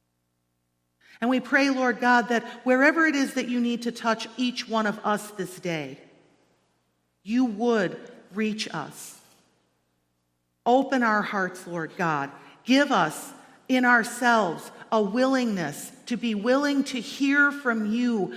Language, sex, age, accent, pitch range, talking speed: English, female, 50-69, American, 175-240 Hz, 135 wpm